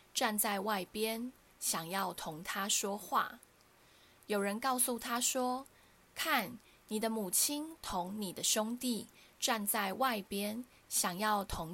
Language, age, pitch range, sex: Chinese, 20-39, 200-255 Hz, female